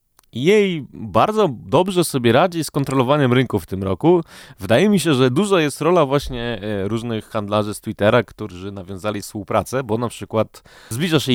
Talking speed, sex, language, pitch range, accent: 165 wpm, male, Polish, 100-130 Hz, native